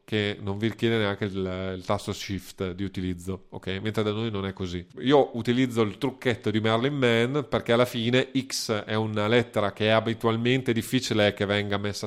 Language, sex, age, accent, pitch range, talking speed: Italian, male, 30-49, native, 100-120 Hz, 195 wpm